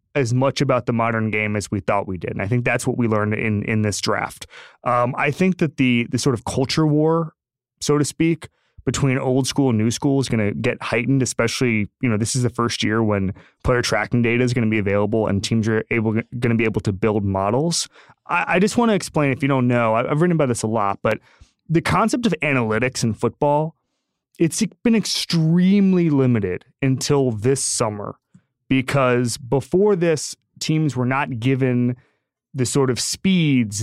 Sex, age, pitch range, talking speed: male, 20-39, 110-140 Hz, 205 wpm